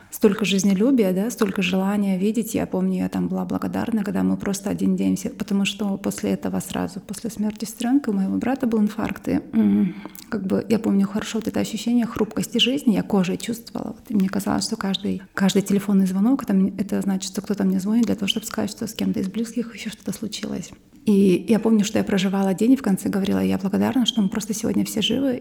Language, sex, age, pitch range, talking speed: Russian, female, 30-49, 195-230 Hz, 215 wpm